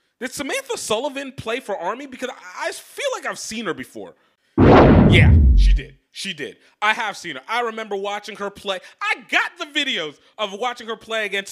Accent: American